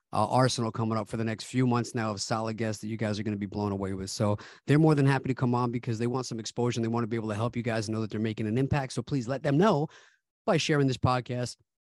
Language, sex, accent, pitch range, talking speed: English, male, American, 110-135 Hz, 310 wpm